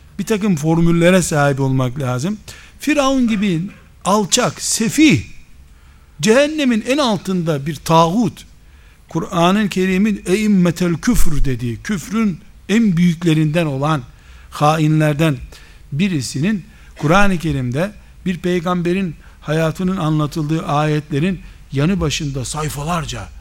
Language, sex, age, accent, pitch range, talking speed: Turkish, male, 60-79, native, 145-180 Hz, 90 wpm